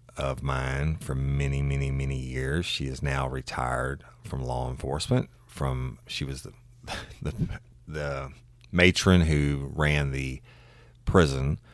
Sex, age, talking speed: male, 30-49, 130 wpm